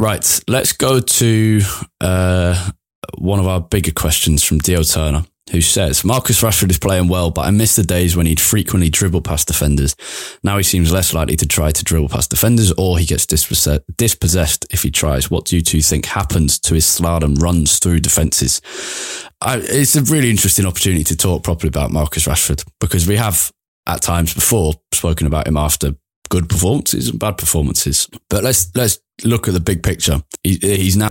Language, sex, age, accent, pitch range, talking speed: English, male, 20-39, British, 80-100 Hz, 185 wpm